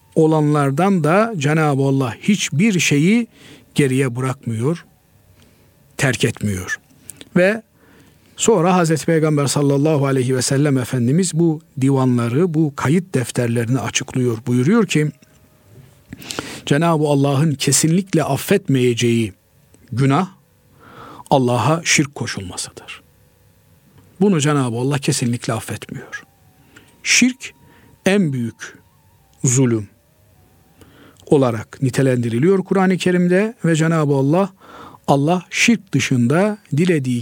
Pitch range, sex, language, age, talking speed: 125-185 Hz, male, Turkish, 50-69, 90 wpm